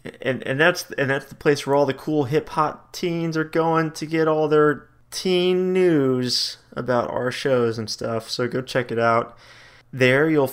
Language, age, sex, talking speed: English, 20-39, male, 190 wpm